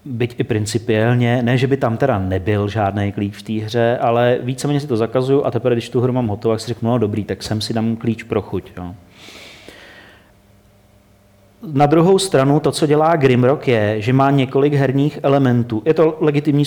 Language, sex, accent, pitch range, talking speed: Czech, male, native, 110-140 Hz, 195 wpm